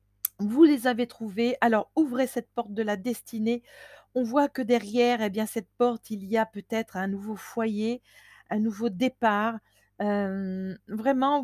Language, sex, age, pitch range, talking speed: French, female, 40-59, 210-255 Hz, 165 wpm